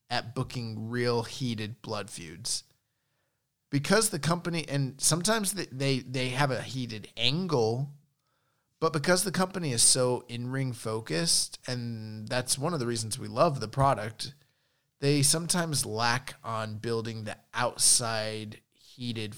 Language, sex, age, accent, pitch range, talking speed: English, male, 30-49, American, 110-140 Hz, 135 wpm